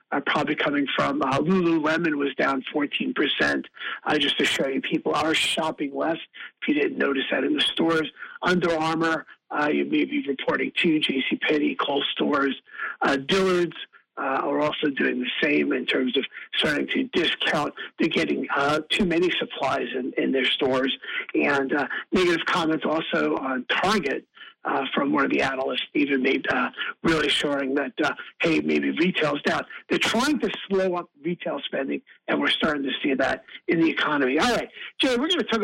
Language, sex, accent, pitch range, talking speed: English, male, American, 155-225 Hz, 180 wpm